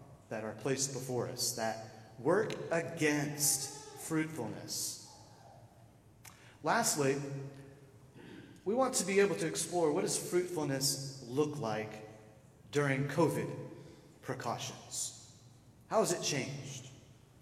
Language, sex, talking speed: English, male, 100 wpm